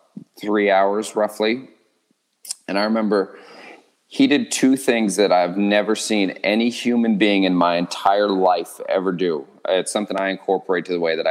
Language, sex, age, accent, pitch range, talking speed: English, male, 30-49, American, 95-115 Hz, 165 wpm